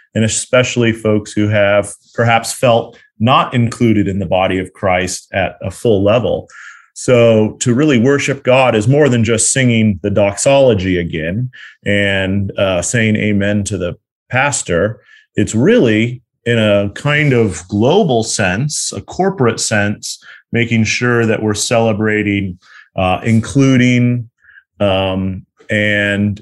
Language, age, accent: English, 30-49, American